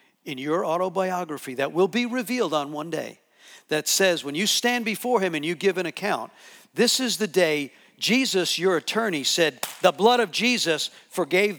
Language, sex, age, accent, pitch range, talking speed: English, male, 50-69, American, 155-225 Hz, 180 wpm